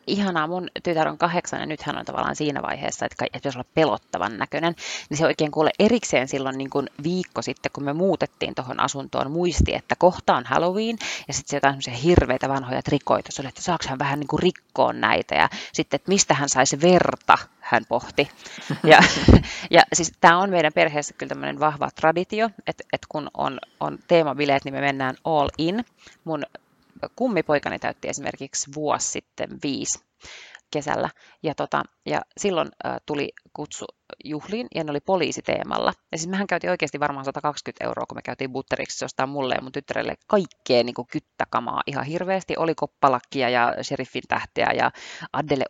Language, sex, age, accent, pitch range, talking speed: Finnish, female, 30-49, native, 135-175 Hz, 165 wpm